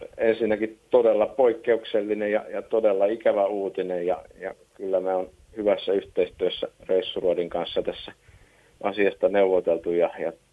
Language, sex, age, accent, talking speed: Finnish, male, 50-69, native, 125 wpm